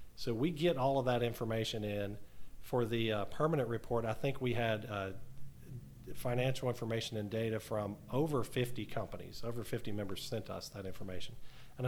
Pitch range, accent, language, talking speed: 110-130 Hz, American, English, 170 wpm